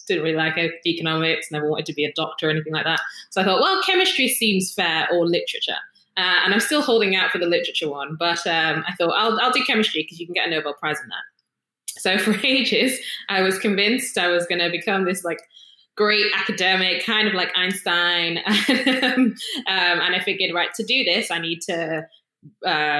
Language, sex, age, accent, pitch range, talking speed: English, female, 20-39, British, 170-230 Hz, 210 wpm